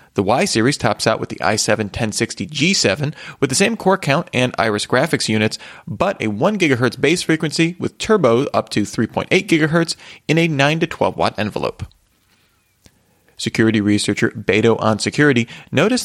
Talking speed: 160 wpm